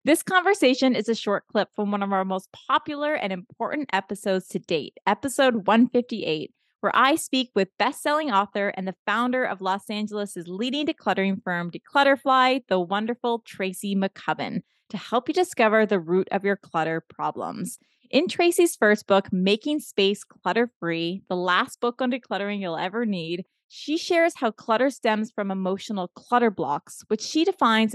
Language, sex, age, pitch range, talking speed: English, female, 20-39, 190-260 Hz, 165 wpm